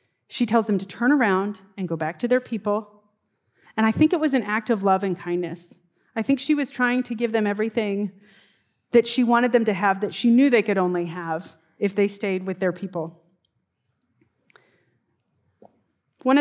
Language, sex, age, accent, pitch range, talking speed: English, female, 30-49, American, 190-240 Hz, 190 wpm